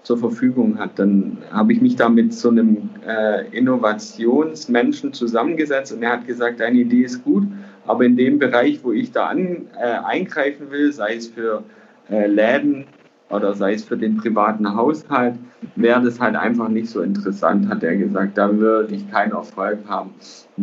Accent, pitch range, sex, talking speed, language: German, 110-150 Hz, male, 180 wpm, German